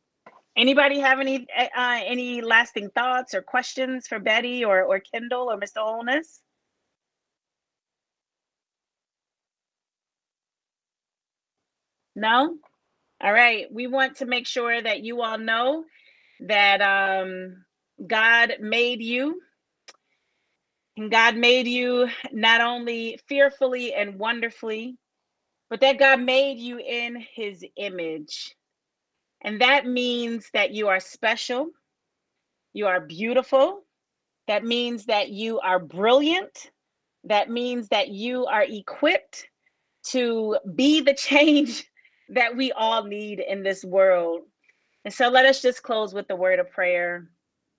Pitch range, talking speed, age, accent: 205-260 Hz, 120 wpm, 30-49, American